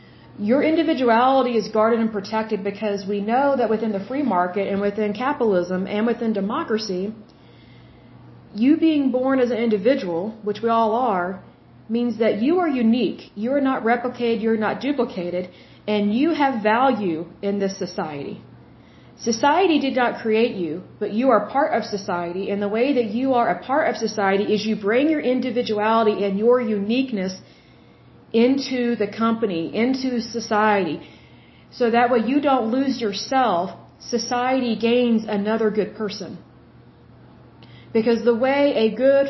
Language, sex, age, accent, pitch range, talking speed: Bengali, female, 40-59, American, 205-250 Hz, 155 wpm